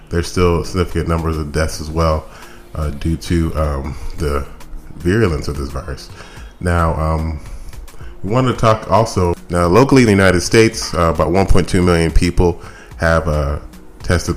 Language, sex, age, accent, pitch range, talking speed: English, male, 30-49, American, 80-95 Hz, 160 wpm